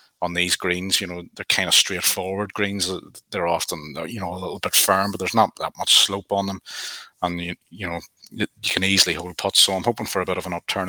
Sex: male